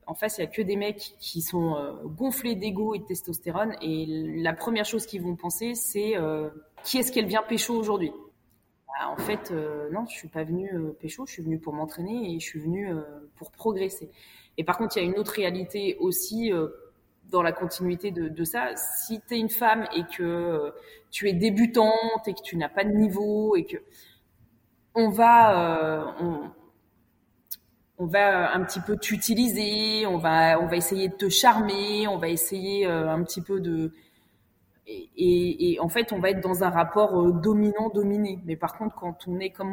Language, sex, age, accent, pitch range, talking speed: French, female, 20-39, French, 165-215 Hz, 205 wpm